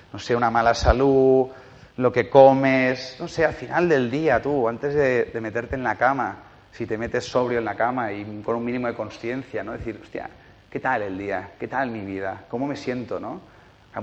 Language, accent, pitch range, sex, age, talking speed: Spanish, Spanish, 110-135 Hz, male, 30-49, 220 wpm